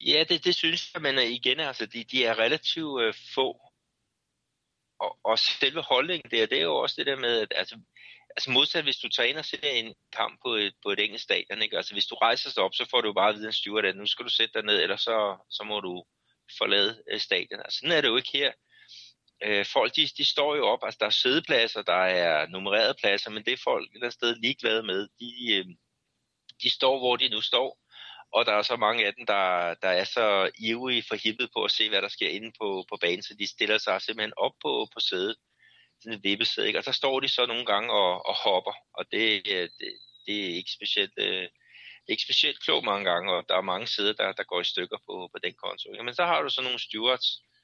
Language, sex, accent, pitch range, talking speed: Danish, male, native, 105-150 Hz, 240 wpm